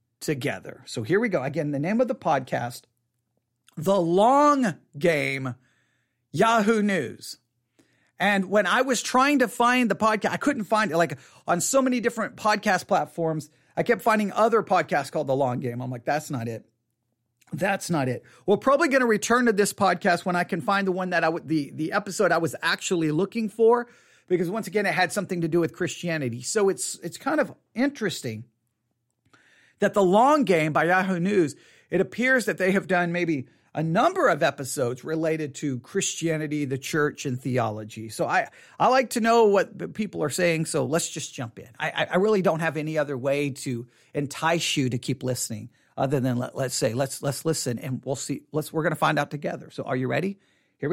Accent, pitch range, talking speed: American, 140-210 Hz, 200 wpm